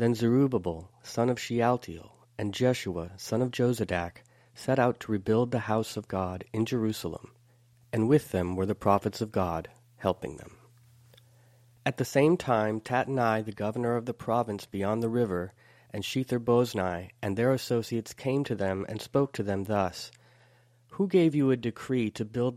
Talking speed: 170 wpm